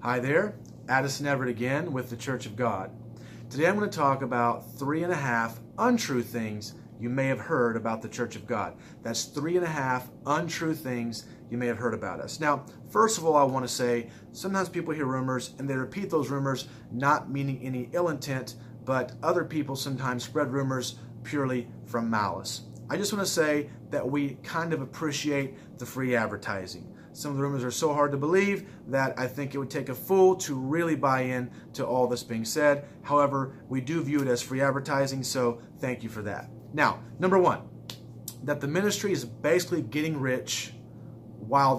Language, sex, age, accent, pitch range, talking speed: English, male, 40-59, American, 120-150 Hz, 200 wpm